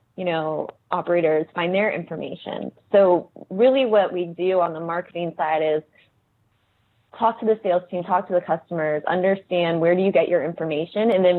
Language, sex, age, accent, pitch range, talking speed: English, female, 20-39, American, 150-180 Hz, 180 wpm